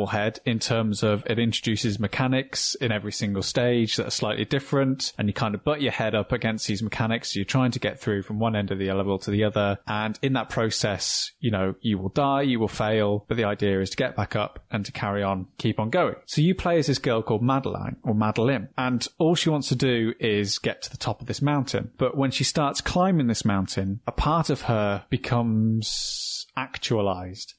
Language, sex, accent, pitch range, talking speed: English, male, British, 105-130 Hz, 225 wpm